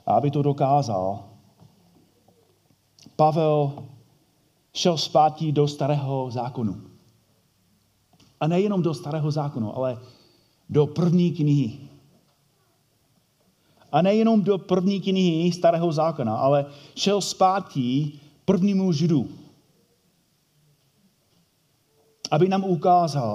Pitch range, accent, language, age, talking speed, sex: 140-180 Hz, native, Czech, 40-59, 85 wpm, male